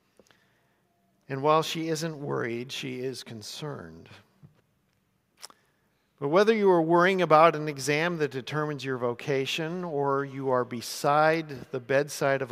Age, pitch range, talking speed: 50-69, 135-170 Hz, 130 wpm